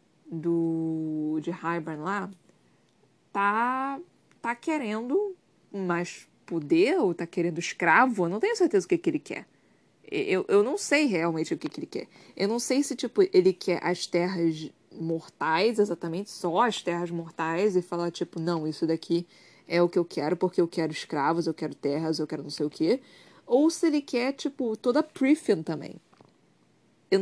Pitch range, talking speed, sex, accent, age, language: 165-230 Hz, 180 wpm, female, Brazilian, 20-39, Portuguese